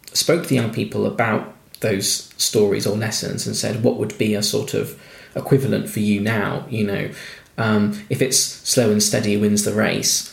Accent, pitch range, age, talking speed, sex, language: British, 105-130 Hz, 20-39, 190 wpm, male, English